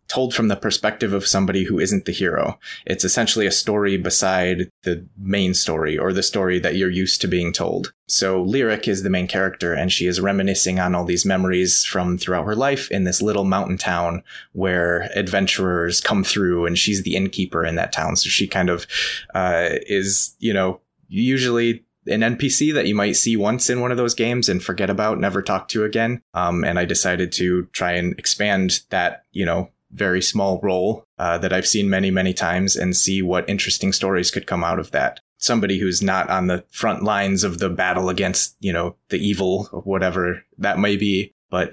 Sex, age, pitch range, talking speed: male, 20-39, 90-105 Hz, 205 wpm